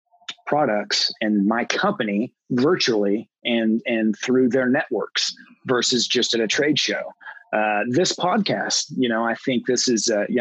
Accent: American